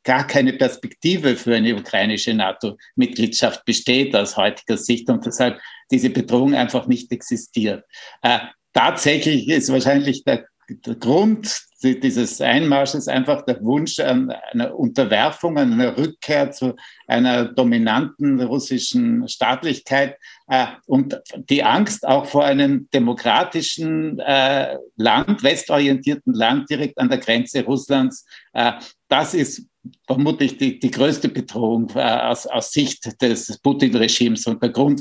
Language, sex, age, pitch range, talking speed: German, male, 60-79, 125-165 Hz, 125 wpm